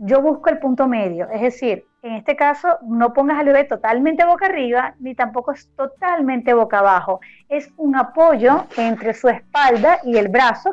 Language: Spanish